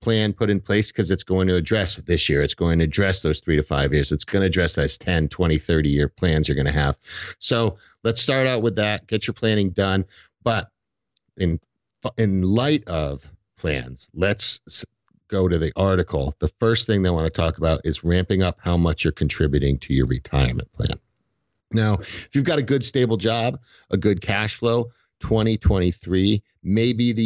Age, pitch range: 50-69, 85-110 Hz